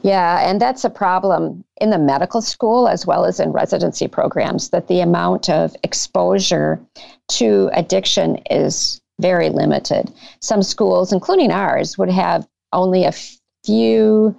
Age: 50-69